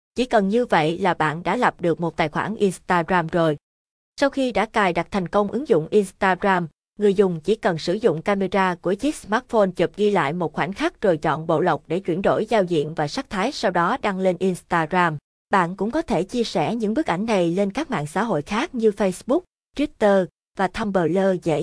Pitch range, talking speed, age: 170-220 Hz, 220 wpm, 20-39